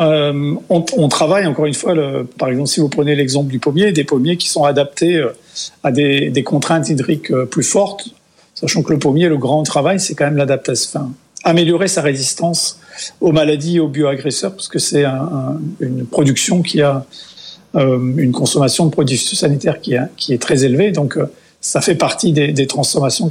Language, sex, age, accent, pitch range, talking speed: French, male, 50-69, French, 145-185 Hz, 185 wpm